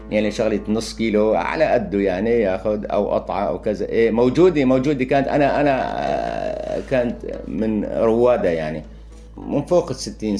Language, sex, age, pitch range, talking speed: Arabic, male, 50-69, 105-135 Hz, 150 wpm